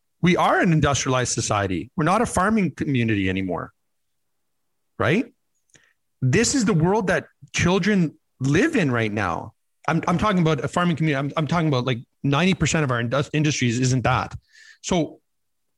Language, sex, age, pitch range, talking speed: English, male, 40-59, 130-170 Hz, 155 wpm